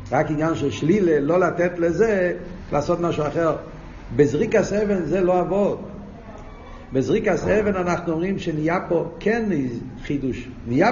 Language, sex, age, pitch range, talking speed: Hebrew, male, 50-69, 125-180 Hz, 130 wpm